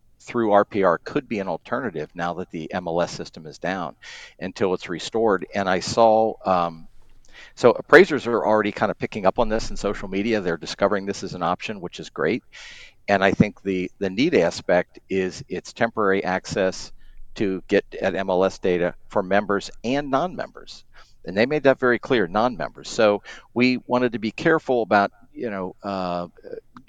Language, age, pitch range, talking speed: English, 50-69, 90-105 Hz, 175 wpm